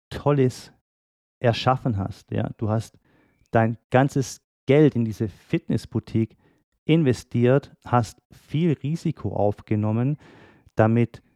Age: 40-59